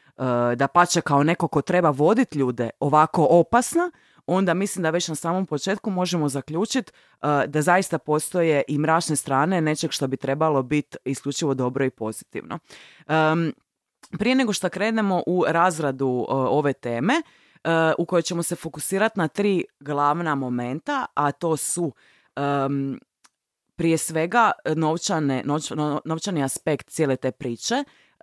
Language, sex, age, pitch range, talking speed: Croatian, female, 20-39, 140-175 Hz, 145 wpm